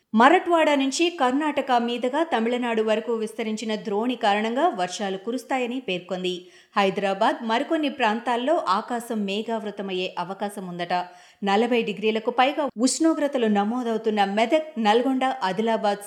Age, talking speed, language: 30-49, 100 wpm, Telugu